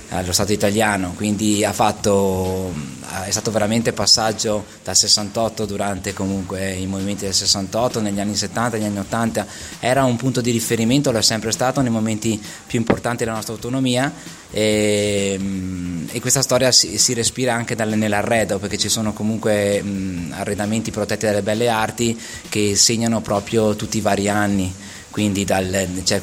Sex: male